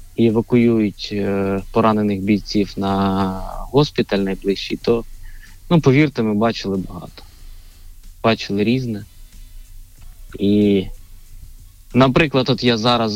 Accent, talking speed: native, 95 wpm